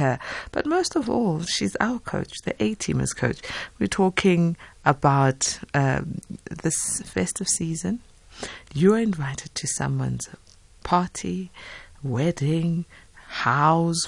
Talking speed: 100 wpm